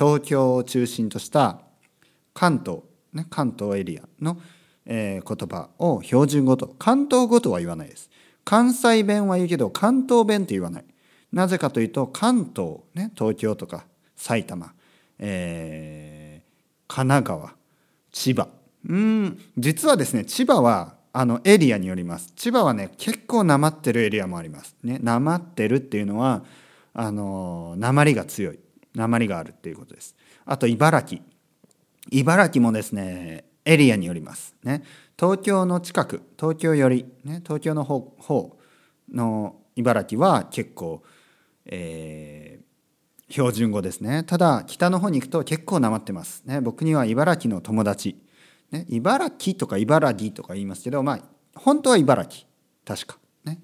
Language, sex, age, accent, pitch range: Japanese, male, 40-59, native, 105-170 Hz